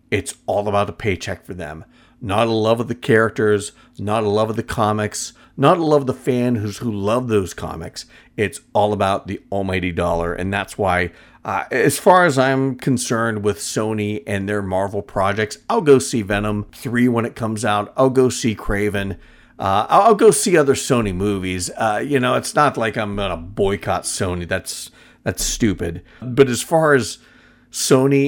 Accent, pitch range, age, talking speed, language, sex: American, 100-120 Hz, 40-59, 190 wpm, English, male